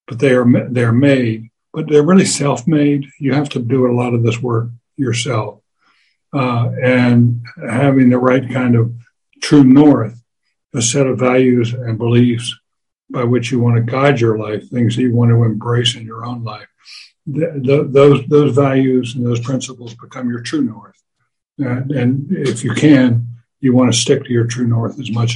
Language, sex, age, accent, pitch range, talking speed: English, male, 60-79, American, 120-135 Hz, 185 wpm